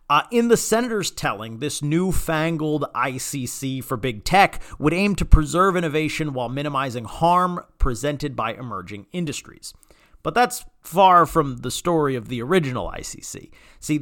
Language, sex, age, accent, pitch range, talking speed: English, male, 40-59, American, 125-175 Hz, 145 wpm